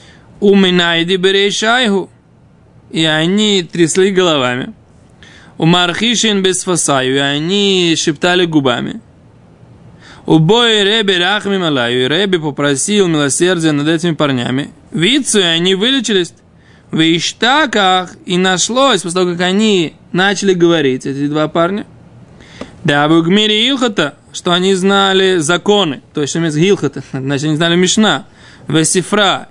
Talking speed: 100 wpm